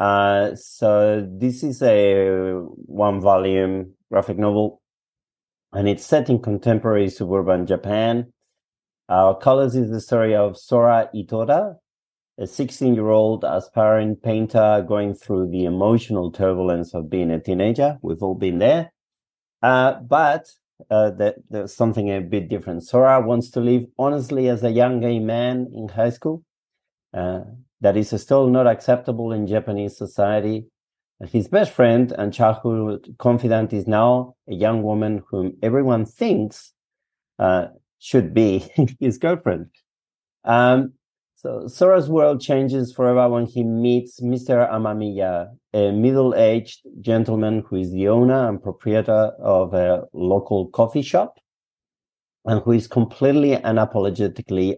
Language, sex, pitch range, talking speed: English, male, 100-125 Hz, 135 wpm